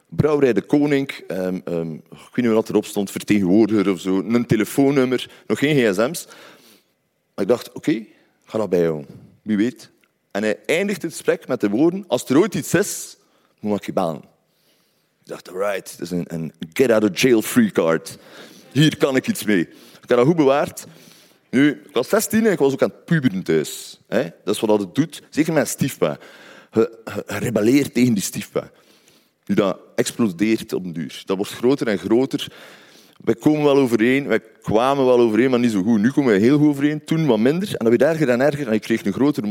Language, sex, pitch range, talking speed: Dutch, male, 110-155 Hz, 210 wpm